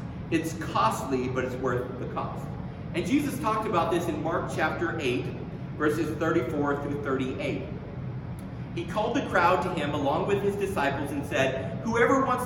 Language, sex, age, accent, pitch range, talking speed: English, male, 40-59, American, 145-200 Hz, 165 wpm